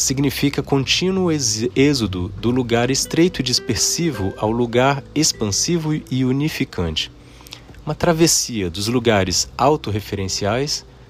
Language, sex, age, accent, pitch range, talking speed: Portuguese, male, 40-59, Brazilian, 100-135 Hz, 95 wpm